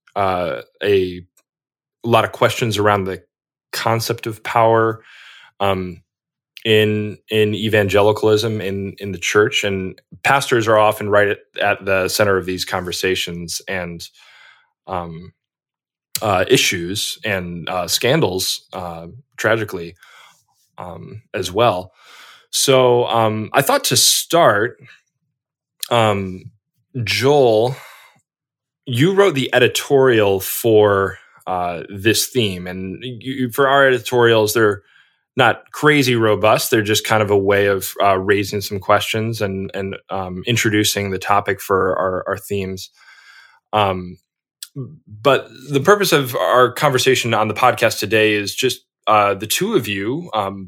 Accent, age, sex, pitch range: American, 20-39, male, 95-120 Hz